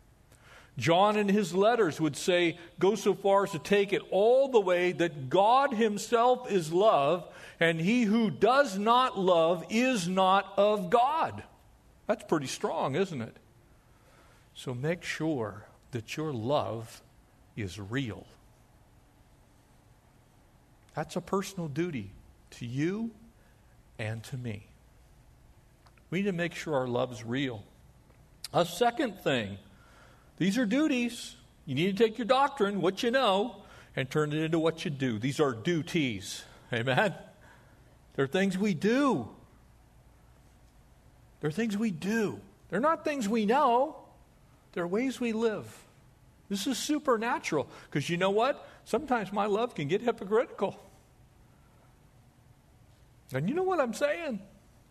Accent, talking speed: American, 135 wpm